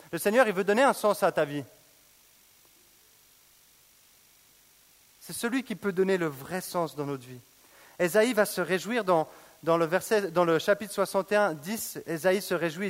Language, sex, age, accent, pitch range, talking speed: French, male, 30-49, French, 150-205 Hz, 170 wpm